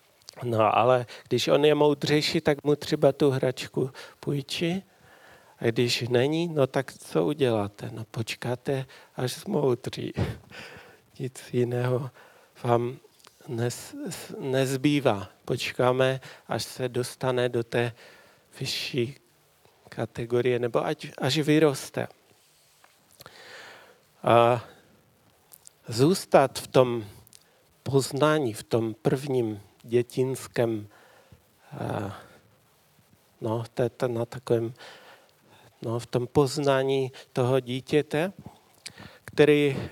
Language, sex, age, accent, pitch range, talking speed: Czech, male, 40-59, native, 125-150 Hz, 80 wpm